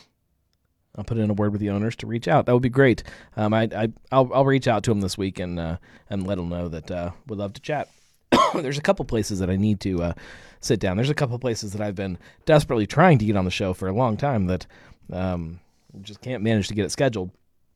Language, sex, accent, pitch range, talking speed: English, male, American, 90-120 Hz, 255 wpm